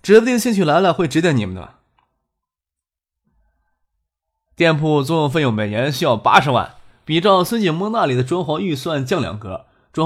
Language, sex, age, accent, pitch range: Chinese, male, 20-39, native, 120-175 Hz